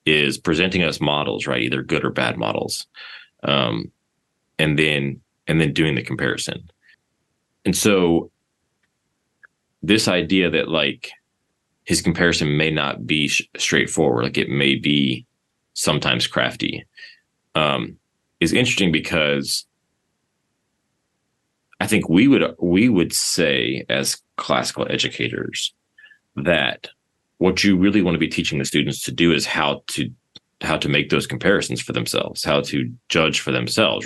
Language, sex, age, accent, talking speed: English, male, 30-49, American, 135 wpm